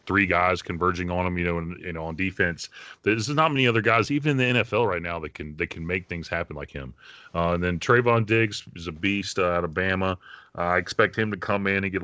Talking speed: 265 wpm